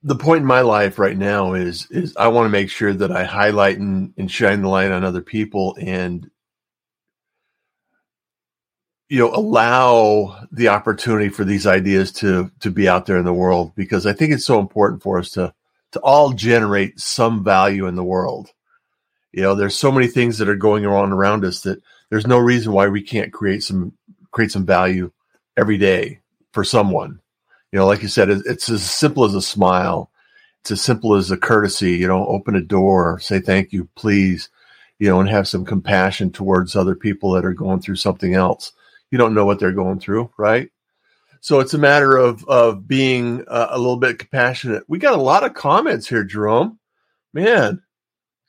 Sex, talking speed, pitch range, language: male, 195 wpm, 95-125 Hz, English